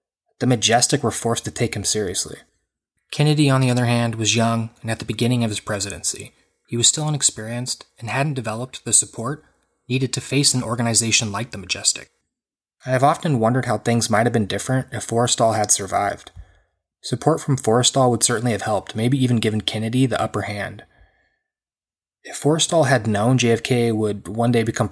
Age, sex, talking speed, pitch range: 20-39, male, 185 wpm, 110-130 Hz